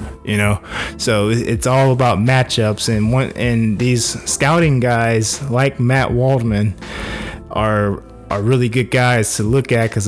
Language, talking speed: English, 150 wpm